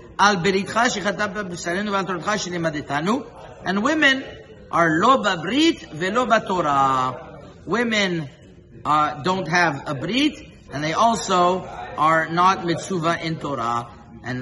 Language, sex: English, male